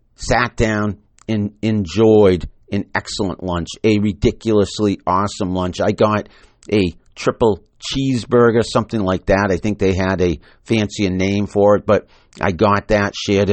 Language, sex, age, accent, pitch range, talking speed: English, male, 50-69, American, 95-115 Hz, 145 wpm